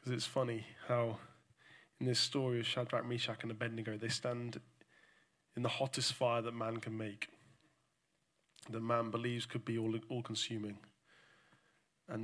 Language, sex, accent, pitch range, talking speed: English, male, British, 110-125 Hz, 140 wpm